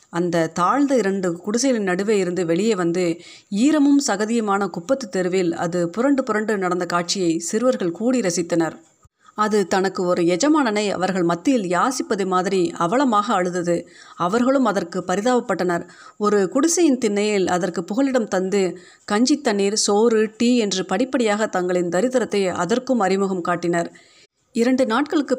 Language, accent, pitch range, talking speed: Tamil, native, 180-245 Hz, 115 wpm